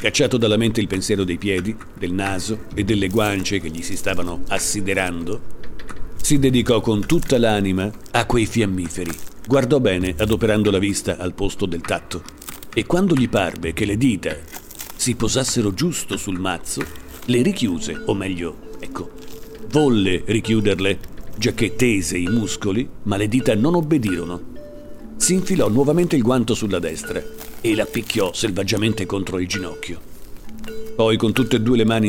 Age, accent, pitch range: 50-69, native, 95-120 Hz